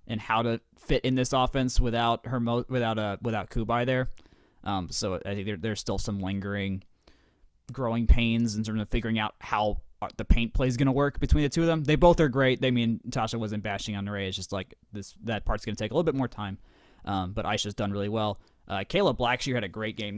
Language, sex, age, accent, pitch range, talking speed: English, male, 20-39, American, 100-130 Hz, 240 wpm